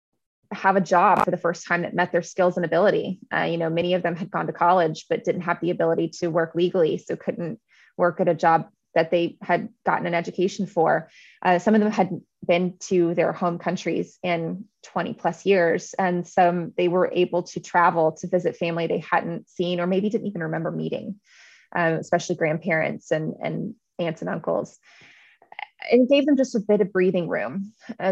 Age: 20-39